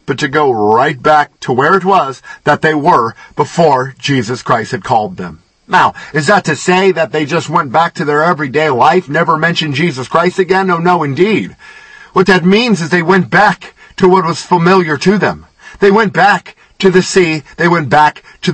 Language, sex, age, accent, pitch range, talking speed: English, male, 50-69, American, 145-190 Hz, 205 wpm